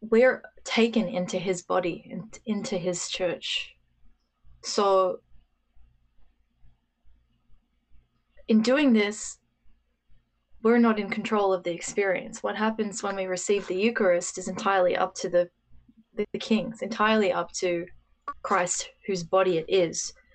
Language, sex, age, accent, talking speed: English, female, 20-39, Australian, 125 wpm